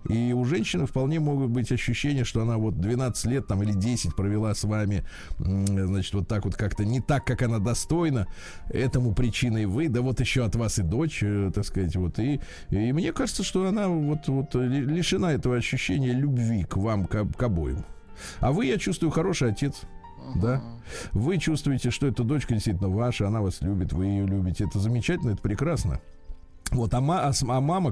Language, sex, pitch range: Russian, male, 100-130 Hz